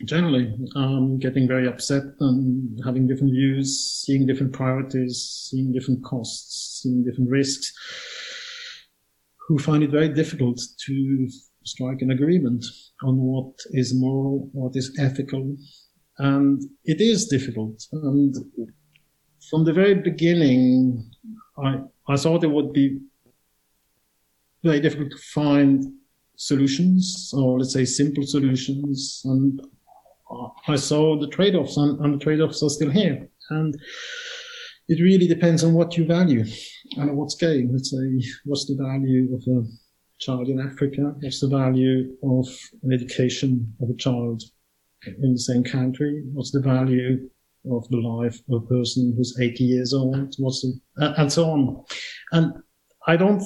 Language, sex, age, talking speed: English, male, 50-69, 140 wpm